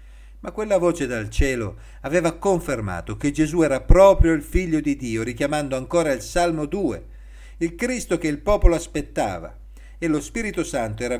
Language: Italian